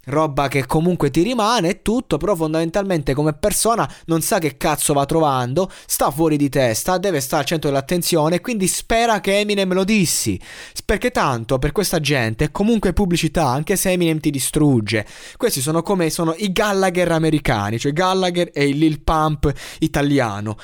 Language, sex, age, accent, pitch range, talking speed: Italian, male, 20-39, native, 140-185 Hz, 170 wpm